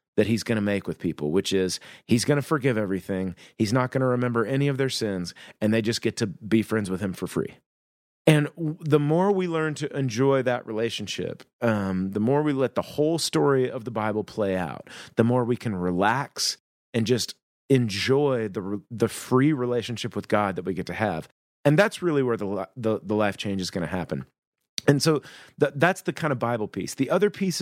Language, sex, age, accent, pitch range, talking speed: English, male, 30-49, American, 110-145 Hz, 215 wpm